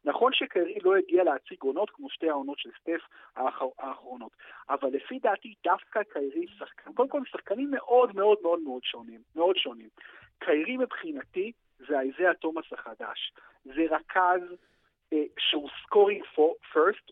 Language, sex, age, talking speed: Hebrew, male, 50-69, 135 wpm